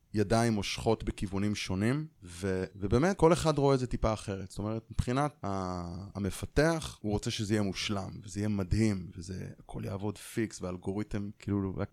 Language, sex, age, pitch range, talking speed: Hebrew, male, 20-39, 100-130 Hz, 160 wpm